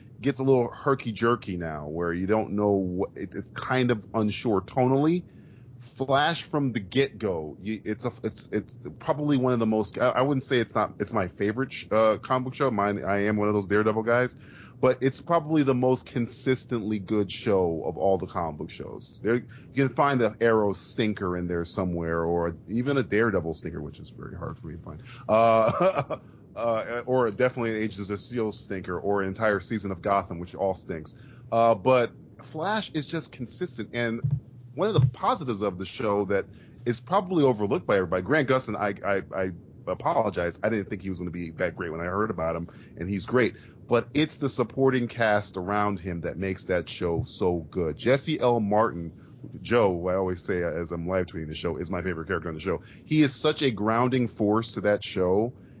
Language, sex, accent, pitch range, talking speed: English, male, American, 100-130 Hz, 205 wpm